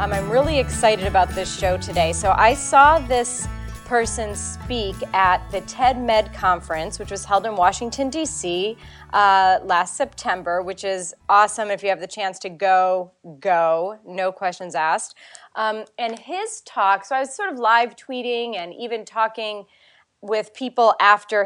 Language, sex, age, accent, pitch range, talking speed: English, female, 30-49, American, 190-230 Hz, 165 wpm